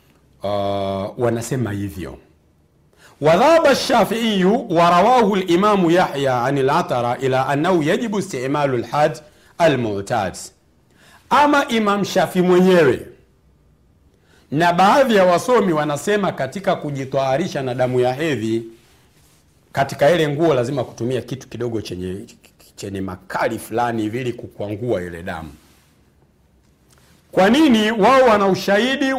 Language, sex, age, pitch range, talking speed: Swahili, male, 50-69, 115-185 Hz, 105 wpm